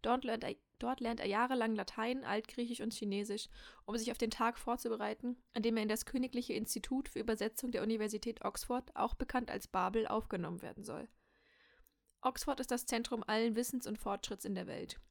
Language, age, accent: German, 10-29, German